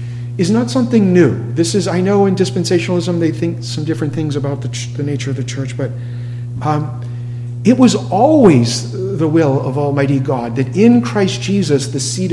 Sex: male